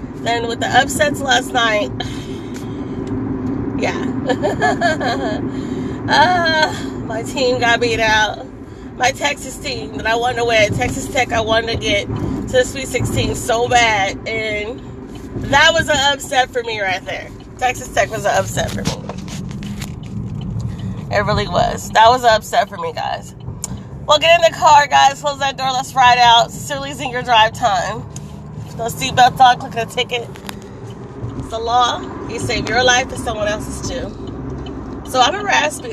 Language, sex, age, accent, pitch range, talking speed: English, female, 30-49, American, 220-275 Hz, 160 wpm